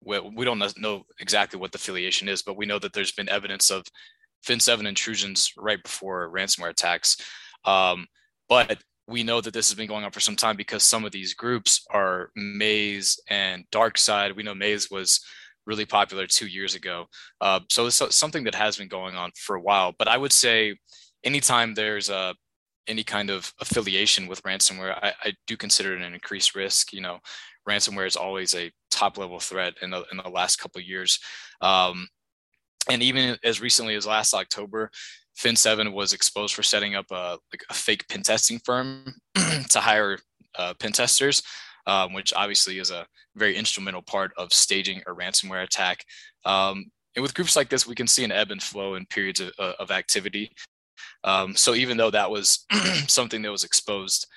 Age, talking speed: 20-39, 190 wpm